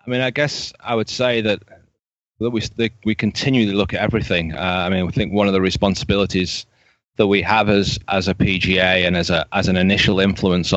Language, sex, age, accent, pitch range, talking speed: English, male, 30-49, British, 90-110 Hz, 215 wpm